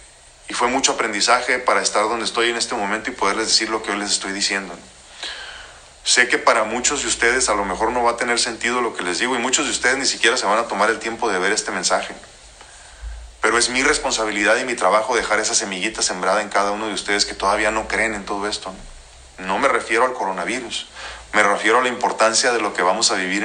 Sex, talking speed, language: male, 240 wpm, Spanish